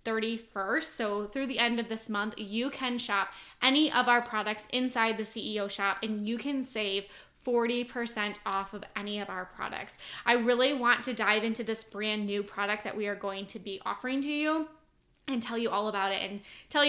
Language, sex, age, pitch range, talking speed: English, female, 10-29, 215-250 Hz, 205 wpm